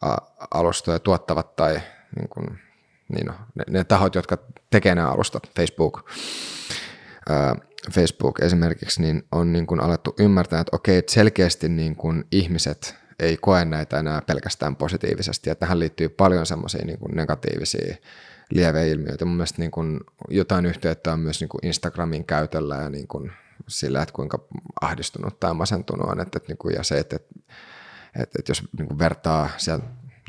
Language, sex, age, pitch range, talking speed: Finnish, male, 30-49, 80-95 Hz, 145 wpm